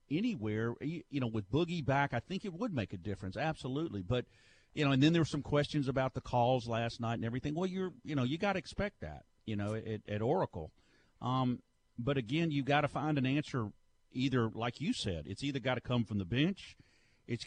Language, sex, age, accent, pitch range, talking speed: English, male, 50-69, American, 105-135 Hz, 225 wpm